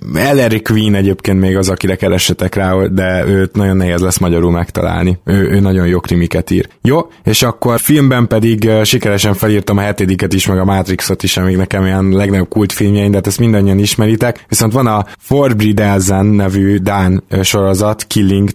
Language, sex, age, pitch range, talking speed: Hungarian, male, 20-39, 95-110 Hz, 170 wpm